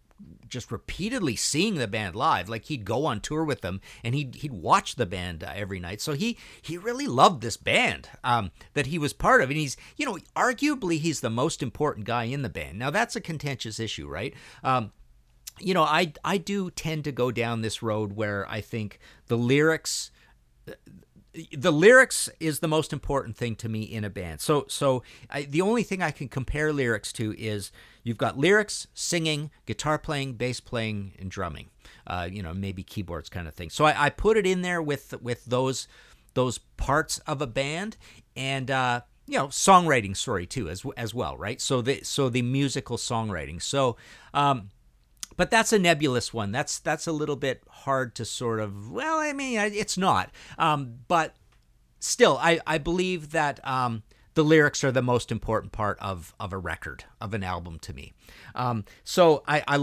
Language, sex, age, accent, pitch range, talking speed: English, male, 50-69, American, 110-150 Hz, 195 wpm